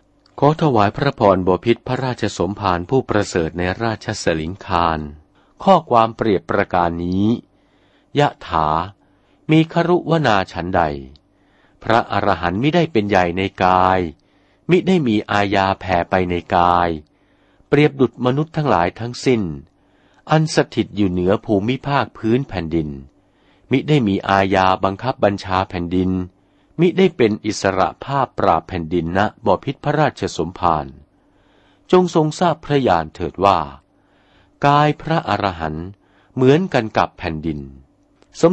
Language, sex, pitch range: Thai, male, 90-130 Hz